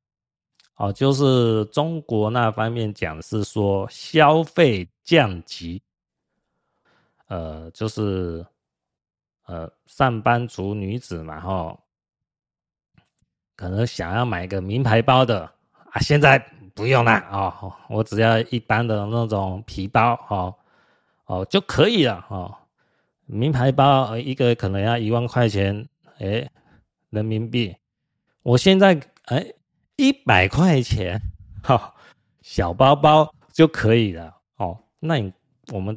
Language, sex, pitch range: Chinese, male, 100-135 Hz